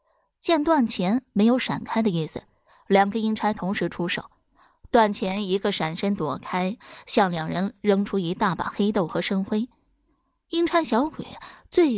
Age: 20-39